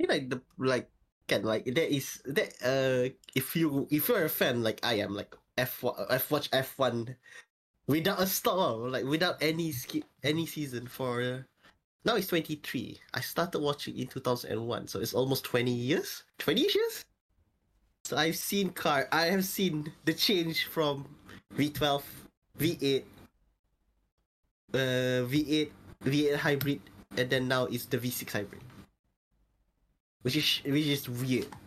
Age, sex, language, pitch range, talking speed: 20-39, male, English, 125-160 Hz, 165 wpm